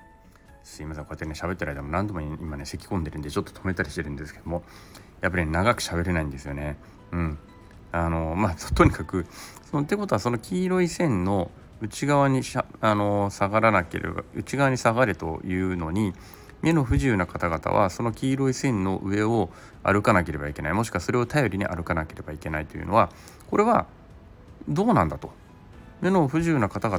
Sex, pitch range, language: male, 85-110 Hz, Japanese